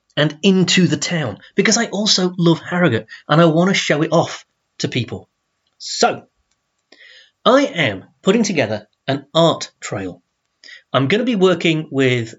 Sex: male